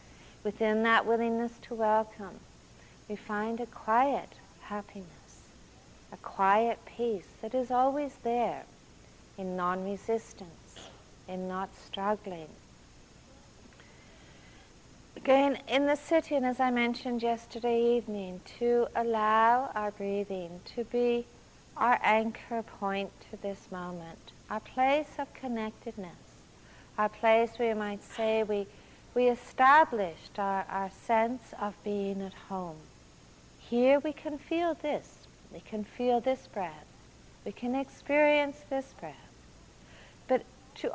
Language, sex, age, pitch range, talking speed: English, female, 40-59, 195-250 Hz, 115 wpm